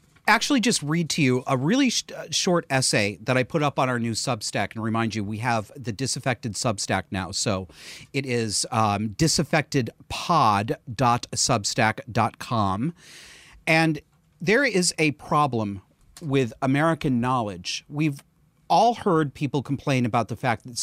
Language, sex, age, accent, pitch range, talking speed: English, male, 40-59, American, 110-155 Hz, 140 wpm